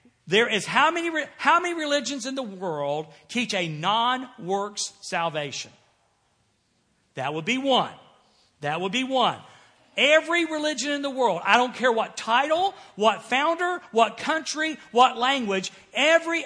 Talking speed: 140 wpm